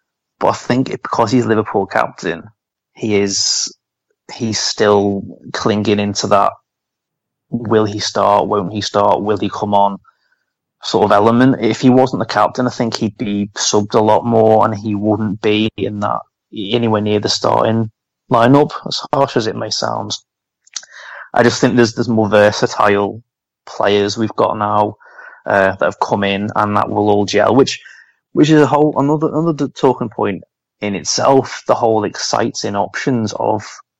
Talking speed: 170 wpm